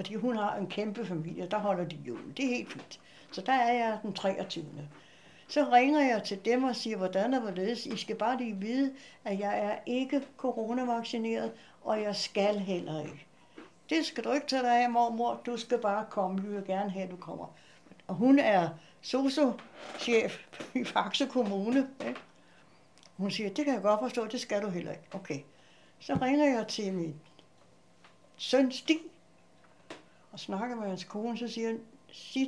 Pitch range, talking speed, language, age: 195-250 Hz, 185 wpm, Danish, 60-79